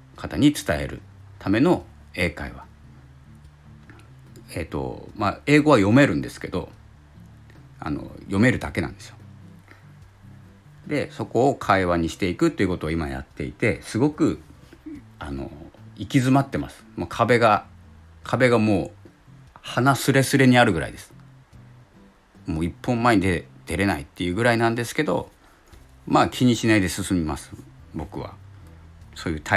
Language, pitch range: Japanese, 80-110 Hz